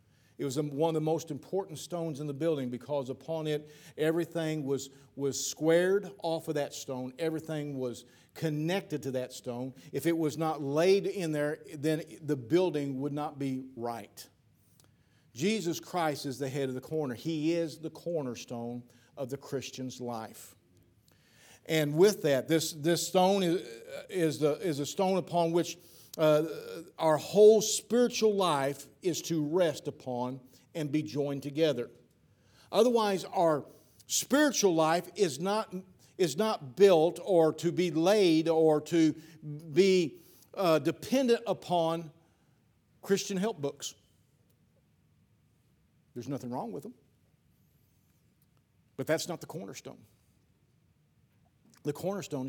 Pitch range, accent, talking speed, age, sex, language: 140-170 Hz, American, 135 wpm, 50-69, male, English